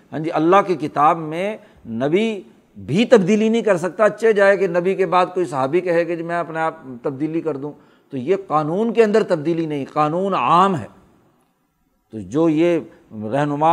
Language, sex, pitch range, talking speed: Urdu, male, 155-185 Hz, 180 wpm